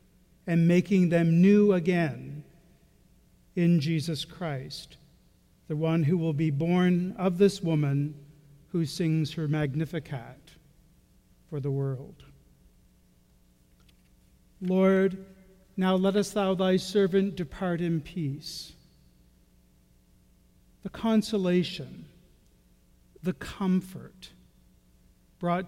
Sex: male